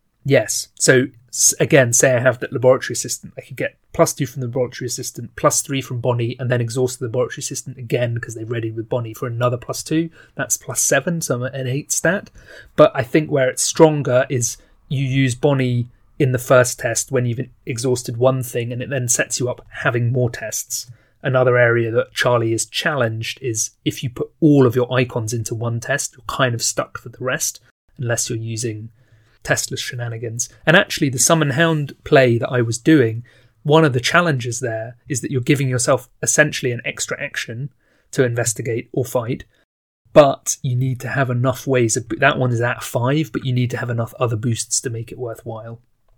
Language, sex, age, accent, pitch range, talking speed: English, male, 30-49, British, 120-140 Hz, 205 wpm